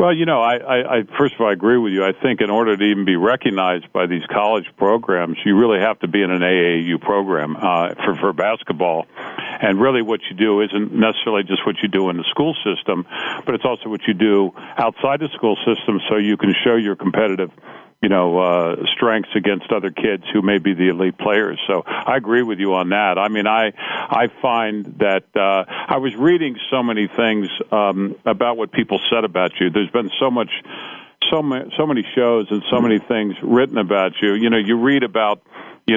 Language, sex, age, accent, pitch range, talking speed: English, male, 50-69, American, 100-120 Hz, 220 wpm